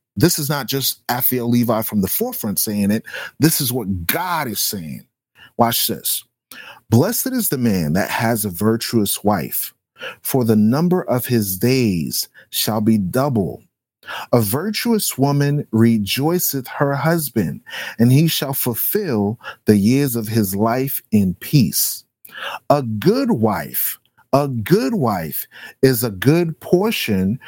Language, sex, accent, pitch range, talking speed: English, male, American, 110-150 Hz, 140 wpm